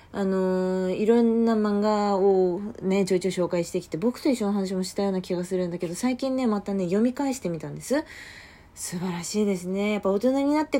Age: 20-39